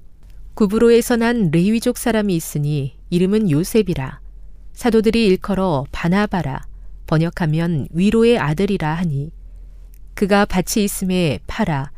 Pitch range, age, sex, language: 135-210 Hz, 40-59, female, Korean